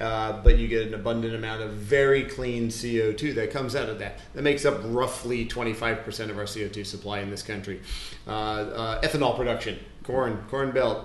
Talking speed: 190 wpm